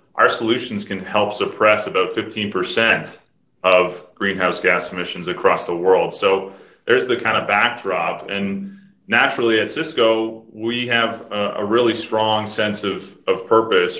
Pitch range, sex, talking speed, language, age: 95-110 Hz, male, 145 wpm, English, 30-49